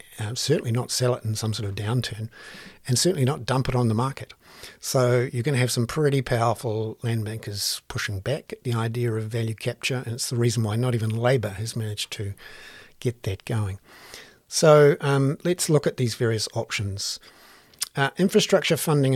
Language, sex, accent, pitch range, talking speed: English, male, Australian, 115-150 Hz, 190 wpm